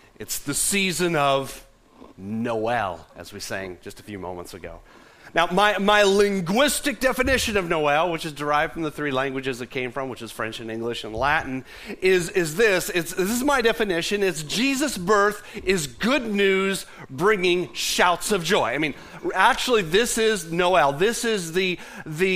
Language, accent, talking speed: English, American, 175 wpm